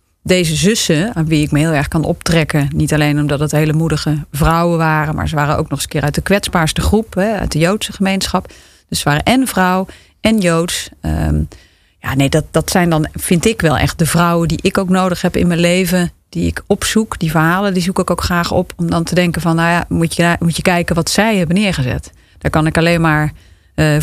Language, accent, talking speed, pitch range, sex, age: Dutch, Dutch, 240 wpm, 150-185 Hz, female, 30-49